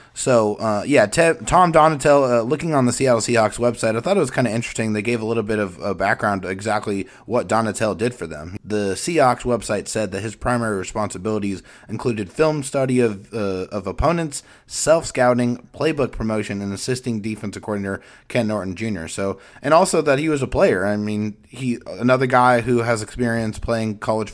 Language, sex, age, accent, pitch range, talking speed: English, male, 30-49, American, 105-125 Hz, 195 wpm